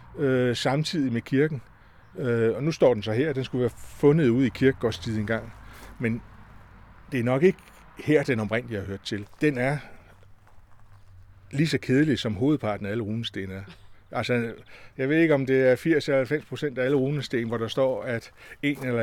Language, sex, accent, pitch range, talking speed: Danish, male, native, 105-130 Hz, 185 wpm